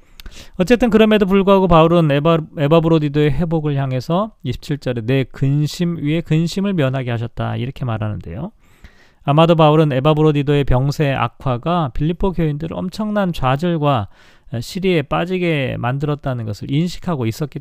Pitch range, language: 120-170 Hz, Korean